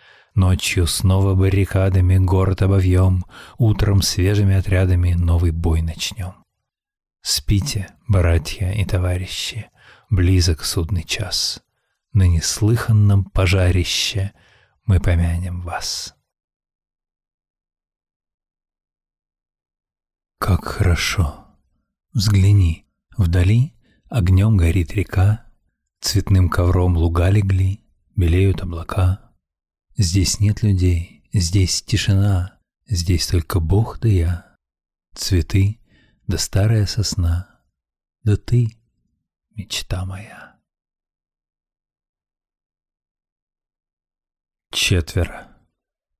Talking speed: 75 wpm